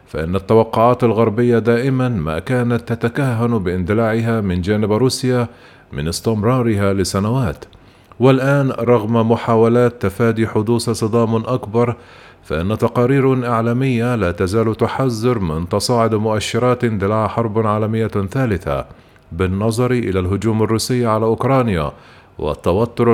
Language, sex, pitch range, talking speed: Arabic, male, 105-125 Hz, 105 wpm